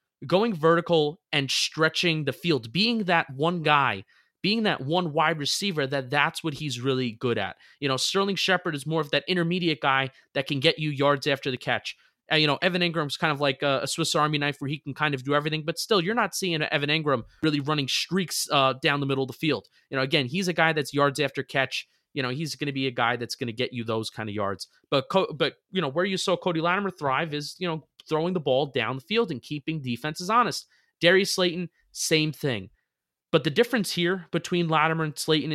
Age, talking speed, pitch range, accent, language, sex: 20-39, 230 wpm, 135-170 Hz, American, English, male